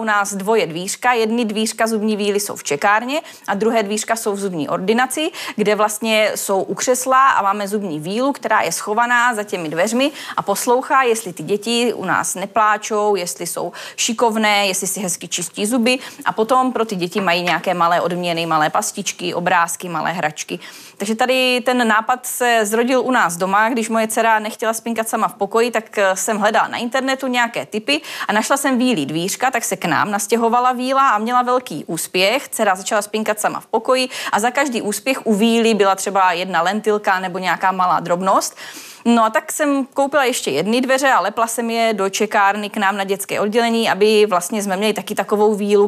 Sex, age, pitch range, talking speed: female, 30-49, 195-235 Hz, 195 wpm